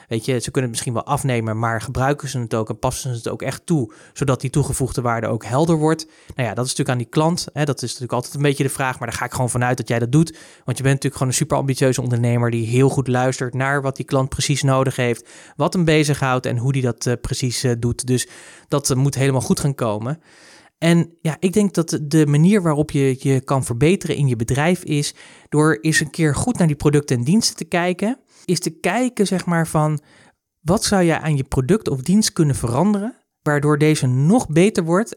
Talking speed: 235 wpm